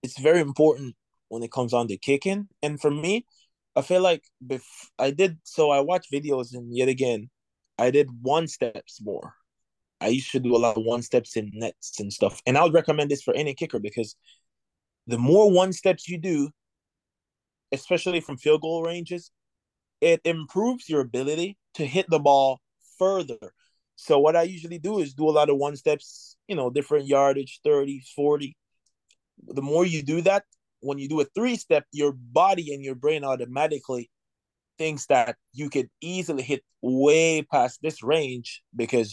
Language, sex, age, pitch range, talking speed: English, male, 20-39, 130-165 Hz, 180 wpm